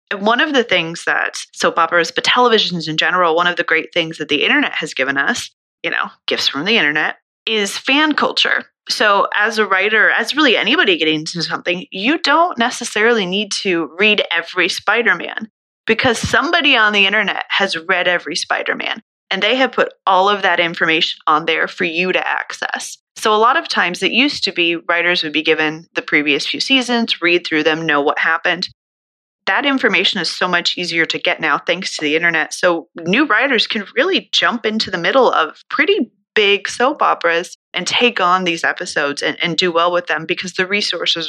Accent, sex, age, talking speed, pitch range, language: American, female, 20-39, 200 wpm, 160-215 Hz, English